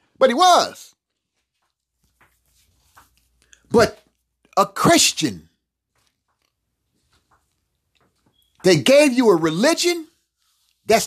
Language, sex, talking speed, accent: English, male, 65 wpm, American